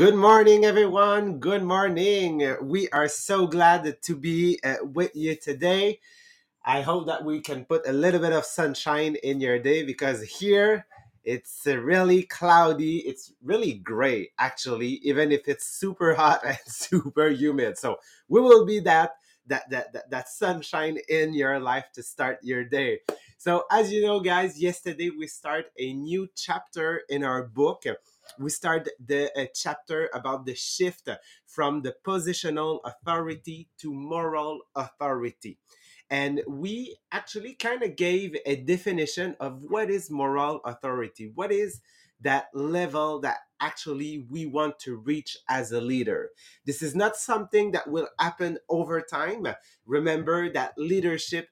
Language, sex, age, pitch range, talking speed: English, male, 30-49, 140-180 Hz, 150 wpm